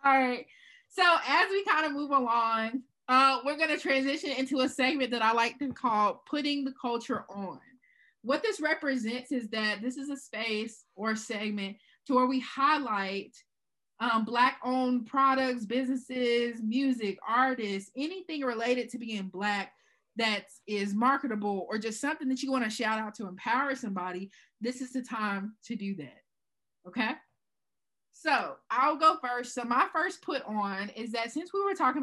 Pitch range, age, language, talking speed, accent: 210-265 Hz, 20-39, English, 170 wpm, American